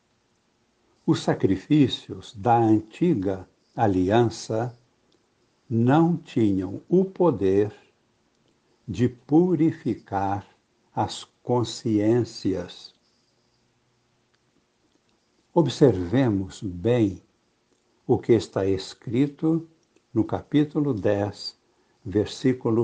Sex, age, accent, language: male, 60-79, Brazilian, Portuguese